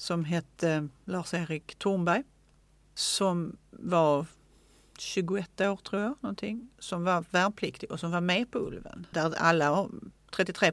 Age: 40-59